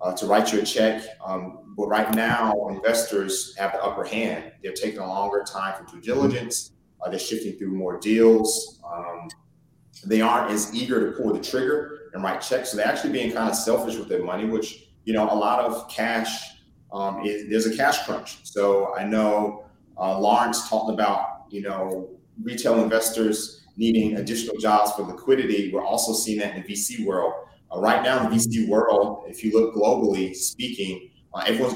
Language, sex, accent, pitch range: English, male, American, 95-115 Hz